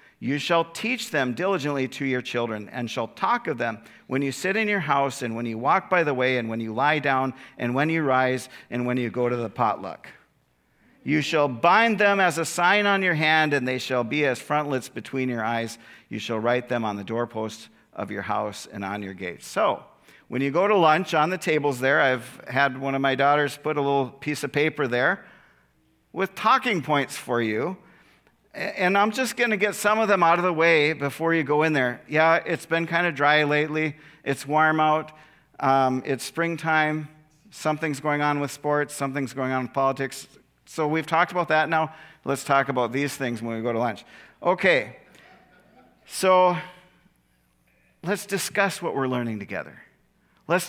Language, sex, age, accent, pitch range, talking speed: English, male, 50-69, American, 125-160 Hz, 200 wpm